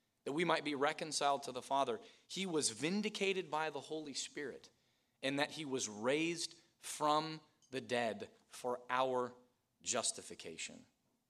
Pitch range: 130-205 Hz